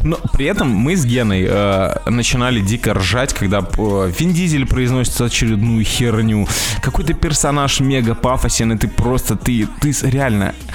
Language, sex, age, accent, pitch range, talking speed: Russian, male, 20-39, native, 100-125 Hz, 150 wpm